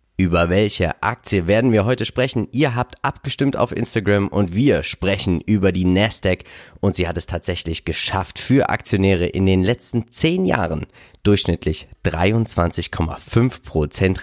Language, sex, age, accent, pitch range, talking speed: German, male, 30-49, German, 90-115 Hz, 140 wpm